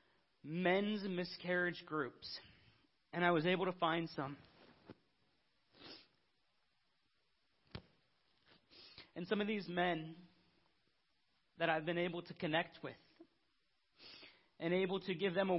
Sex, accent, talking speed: male, American, 110 wpm